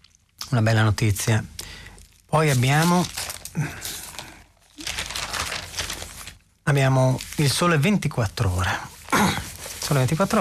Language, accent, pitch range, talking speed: Italian, native, 100-125 Hz, 70 wpm